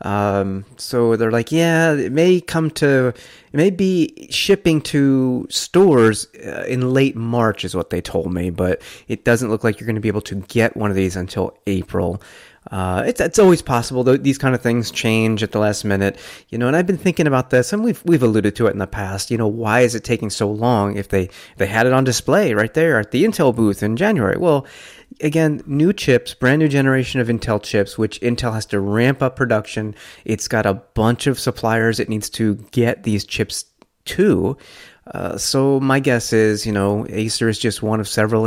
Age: 30-49